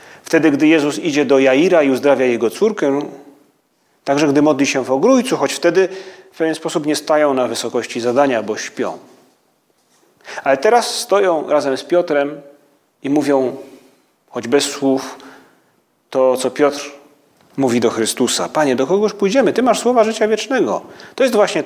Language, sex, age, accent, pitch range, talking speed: Polish, male, 30-49, native, 135-190 Hz, 160 wpm